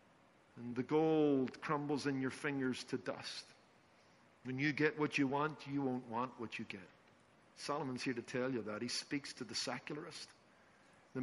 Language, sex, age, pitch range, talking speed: English, male, 50-69, 145-225 Hz, 175 wpm